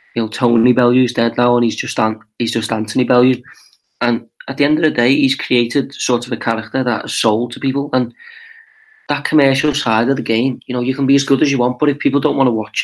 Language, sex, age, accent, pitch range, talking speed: English, male, 30-49, British, 115-125 Hz, 260 wpm